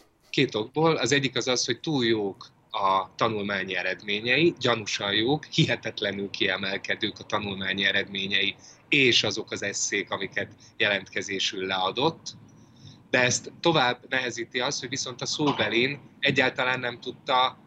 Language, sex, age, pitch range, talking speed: Hungarian, male, 20-39, 105-130 Hz, 125 wpm